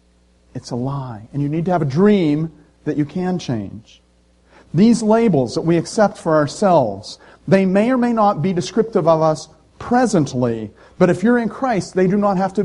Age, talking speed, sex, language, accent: 40-59, 195 wpm, male, English, American